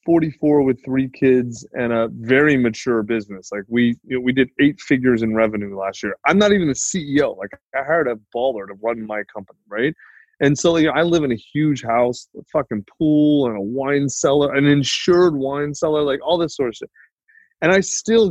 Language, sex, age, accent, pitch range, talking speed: English, male, 20-39, American, 115-155 Hz, 215 wpm